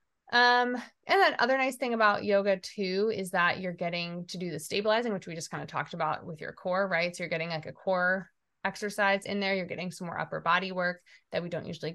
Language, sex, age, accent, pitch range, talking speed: English, female, 20-39, American, 165-200 Hz, 240 wpm